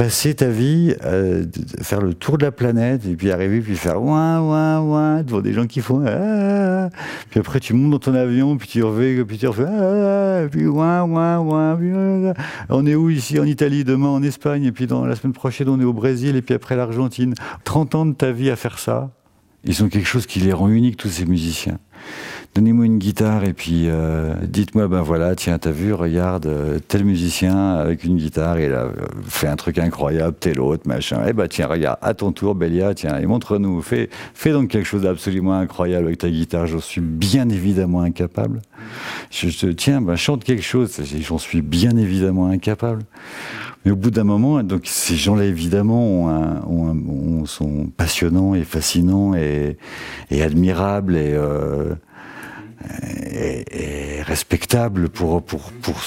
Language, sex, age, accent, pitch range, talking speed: French, male, 50-69, French, 85-130 Hz, 195 wpm